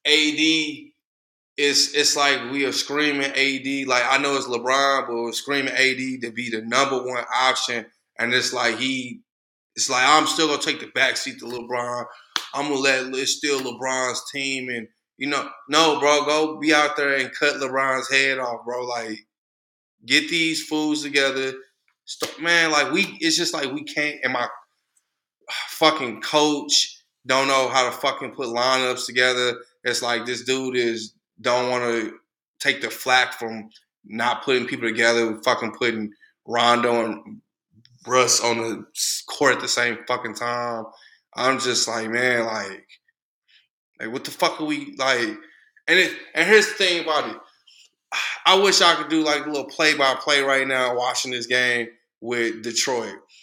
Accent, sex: American, male